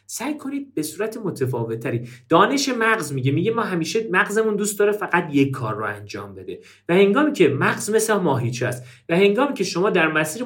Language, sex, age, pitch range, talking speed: Persian, male, 40-59, 135-220 Hz, 195 wpm